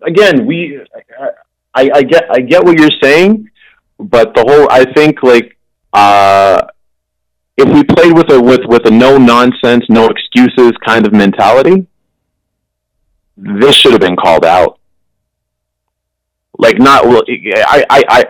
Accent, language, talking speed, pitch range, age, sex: American, English, 140 wpm, 95-150 Hz, 30-49, male